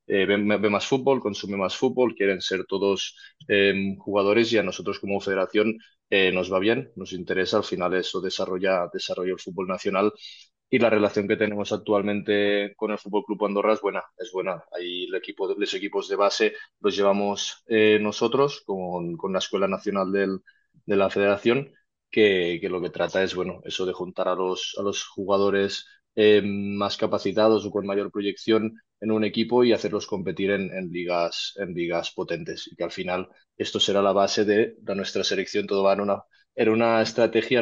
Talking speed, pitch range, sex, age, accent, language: 190 wpm, 100-115 Hz, male, 20-39, Spanish, Spanish